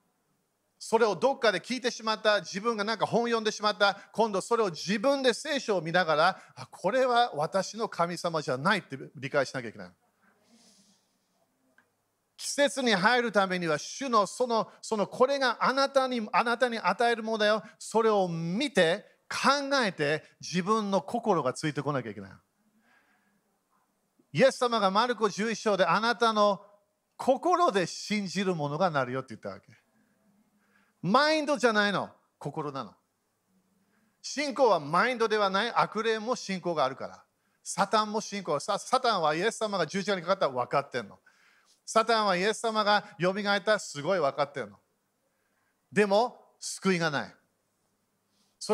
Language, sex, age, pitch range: Japanese, male, 40-59, 180-230 Hz